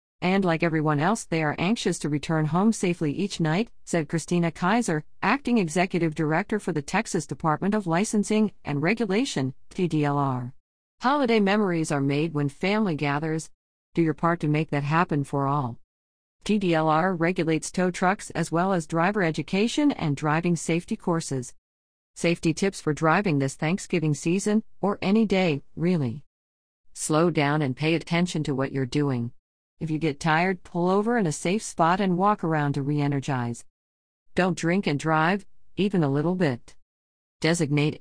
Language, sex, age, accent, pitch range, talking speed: English, female, 40-59, American, 145-185 Hz, 160 wpm